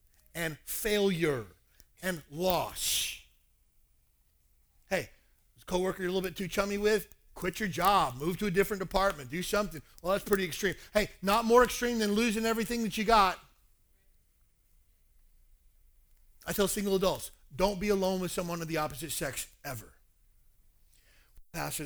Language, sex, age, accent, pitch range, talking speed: English, male, 40-59, American, 130-200 Hz, 145 wpm